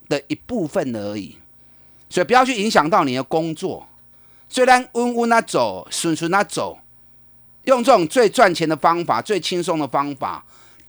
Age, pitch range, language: 30-49, 125-205 Hz, Chinese